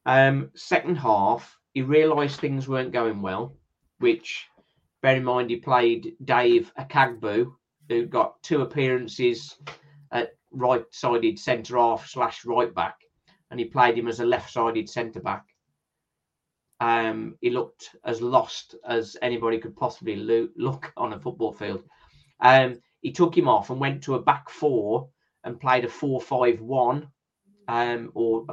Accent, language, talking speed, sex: British, English, 145 wpm, male